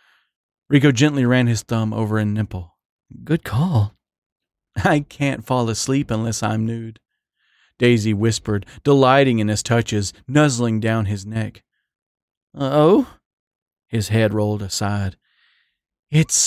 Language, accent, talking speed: English, American, 120 wpm